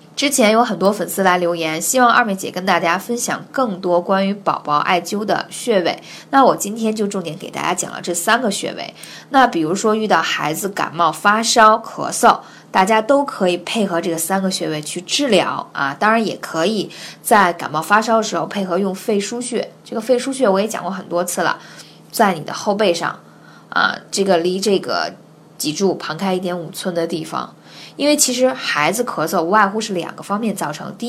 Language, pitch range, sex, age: Chinese, 175-235 Hz, female, 20-39